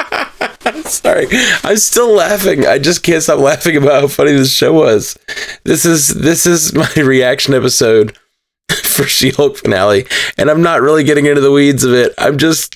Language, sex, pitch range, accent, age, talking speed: English, male, 125-195 Hz, American, 20-39, 180 wpm